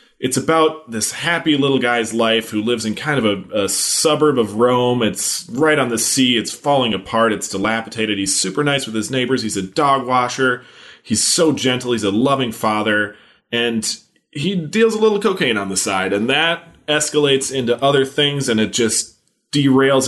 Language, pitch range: English, 100-130 Hz